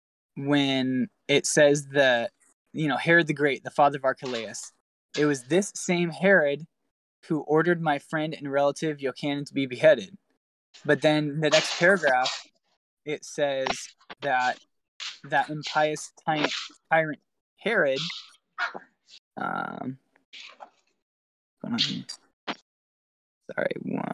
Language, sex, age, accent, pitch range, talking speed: English, male, 10-29, American, 135-160 Hz, 105 wpm